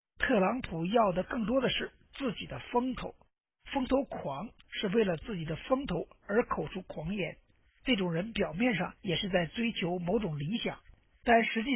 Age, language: 60-79, Chinese